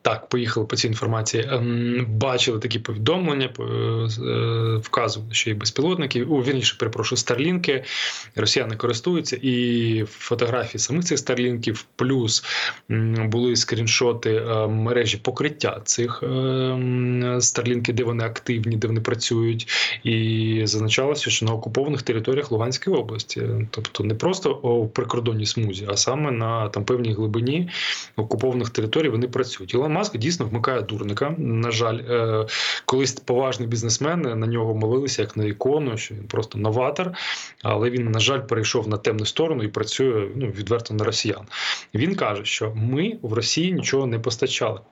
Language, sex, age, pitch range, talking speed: Ukrainian, male, 20-39, 110-130 Hz, 140 wpm